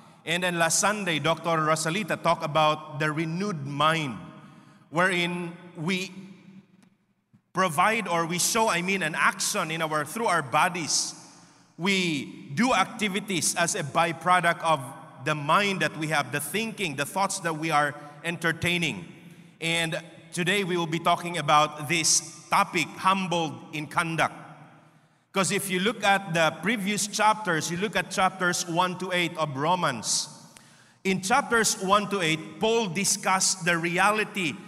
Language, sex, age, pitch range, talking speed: English, male, 30-49, 160-200 Hz, 145 wpm